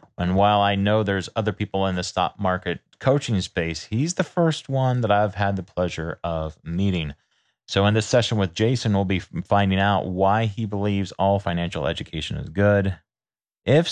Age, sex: 30-49, male